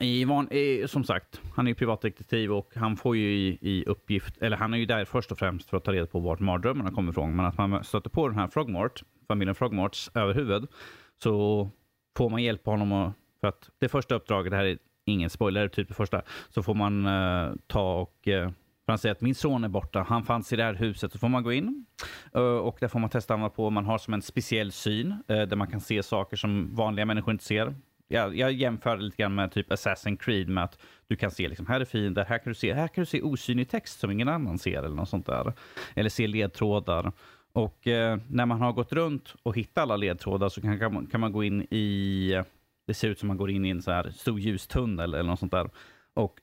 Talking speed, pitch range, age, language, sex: 240 wpm, 100-120 Hz, 30-49, Swedish, male